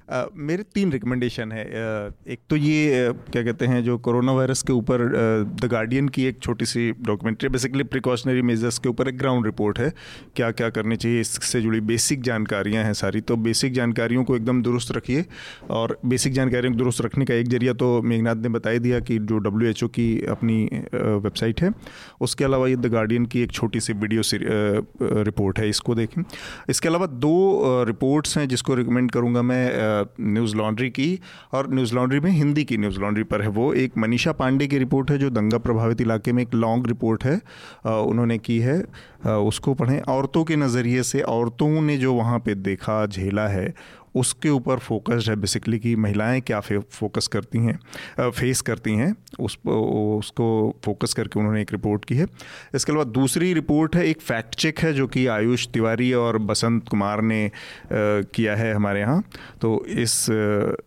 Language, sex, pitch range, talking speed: Hindi, male, 110-130 Hz, 190 wpm